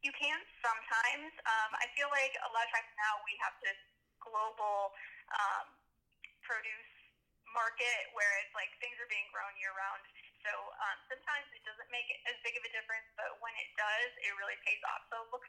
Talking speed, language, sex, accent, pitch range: 185 wpm, English, female, American, 210-255 Hz